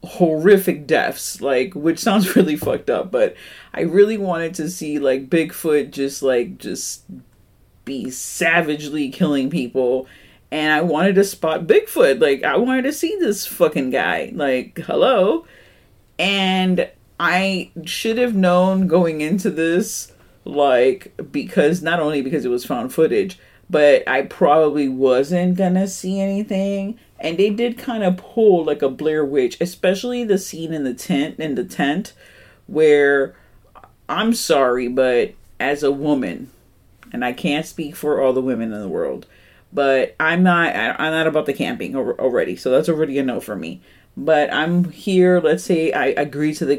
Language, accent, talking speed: English, American, 160 wpm